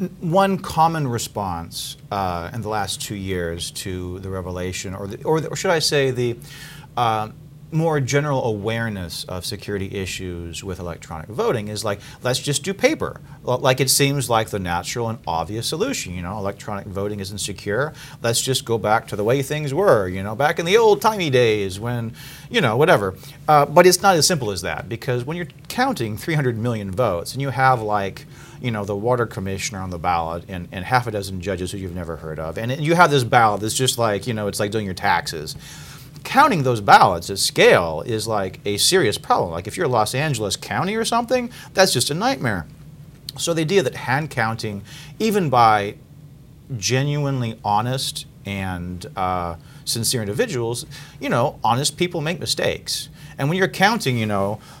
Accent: American